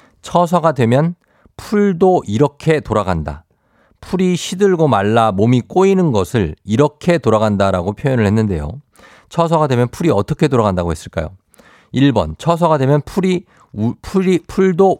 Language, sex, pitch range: Korean, male, 100-155 Hz